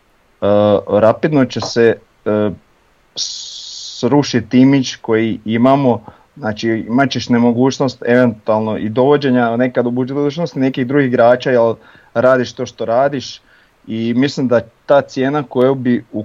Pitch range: 105-130 Hz